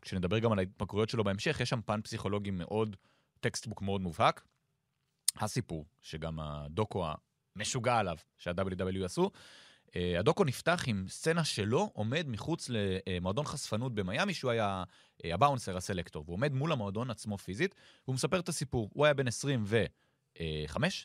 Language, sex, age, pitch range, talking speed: Hebrew, male, 30-49, 100-140 Hz, 140 wpm